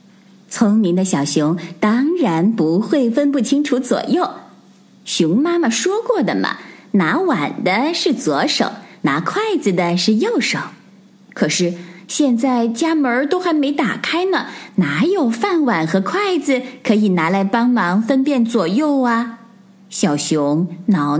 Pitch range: 190-280 Hz